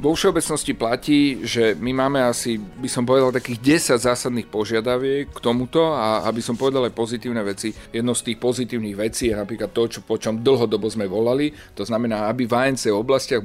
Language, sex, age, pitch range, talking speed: Slovak, male, 40-59, 105-125 Hz, 190 wpm